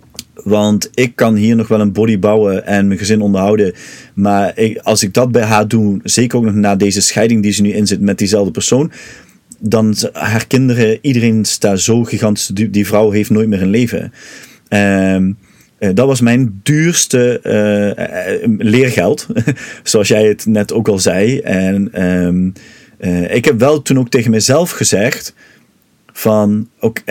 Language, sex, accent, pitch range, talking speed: Dutch, male, Dutch, 105-125 Hz, 155 wpm